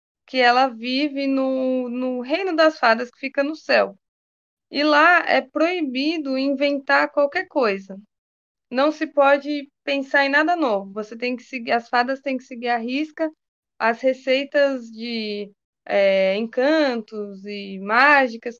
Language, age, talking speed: Portuguese, 20-39, 125 wpm